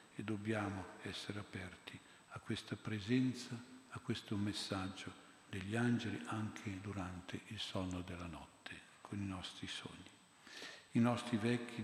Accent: native